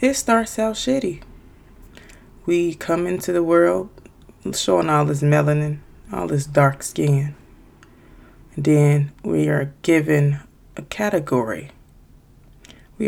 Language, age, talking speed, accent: English, 20-39, 115 wpm, American